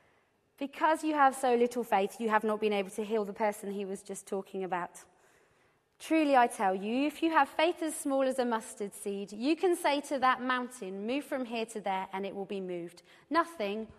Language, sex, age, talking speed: English, female, 30-49, 220 wpm